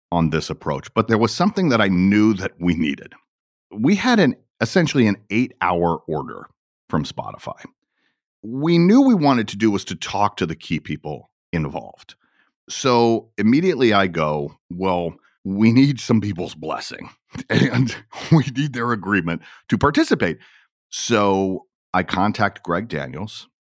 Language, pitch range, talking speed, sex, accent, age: English, 80-120 Hz, 150 wpm, male, American, 40-59